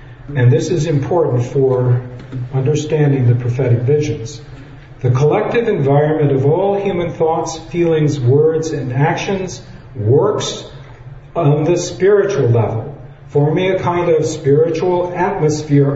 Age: 50-69